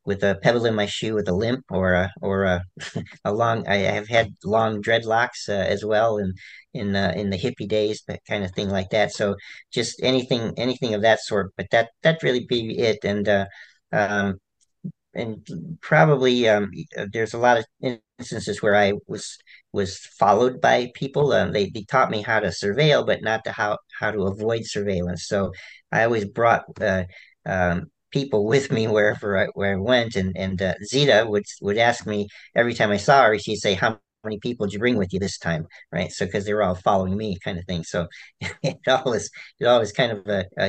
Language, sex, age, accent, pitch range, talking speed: English, male, 40-59, American, 100-115 Hz, 210 wpm